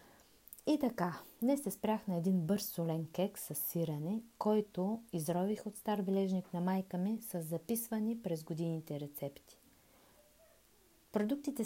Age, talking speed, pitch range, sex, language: 30-49, 135 wpm, 155-230 Hz, female, Bulgarian